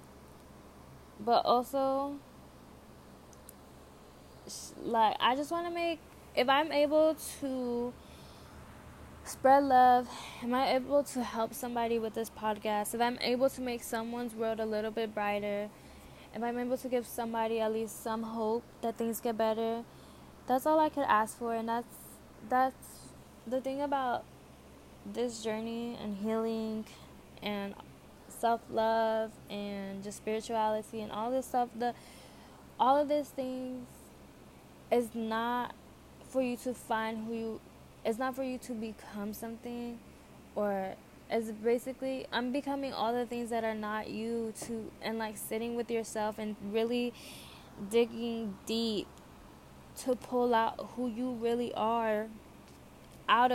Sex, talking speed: female, 140 wpm